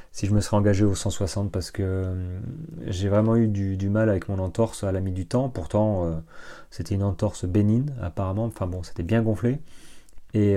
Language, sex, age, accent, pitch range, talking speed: French, male, 30-49, French, 95-115 Hz, 195 wpm